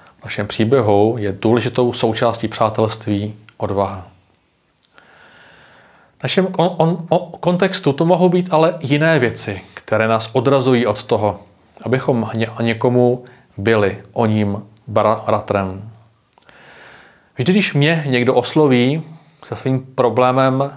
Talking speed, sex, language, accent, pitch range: 115 wpm, male, Czech, native, 110-140 Hz